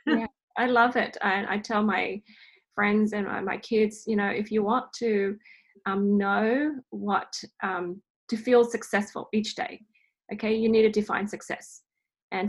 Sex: female